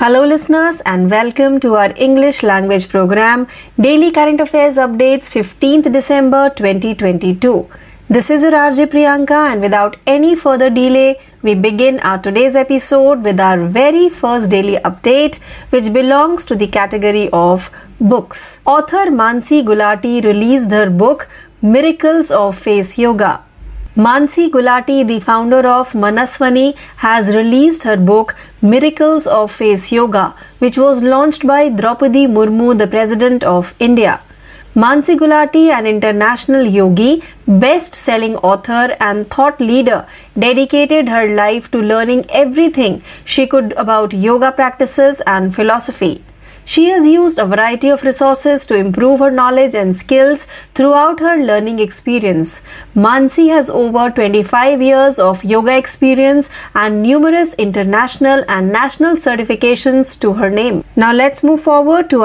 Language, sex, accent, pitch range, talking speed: Marathi, female, native, 215-280 Hz, 135 wpm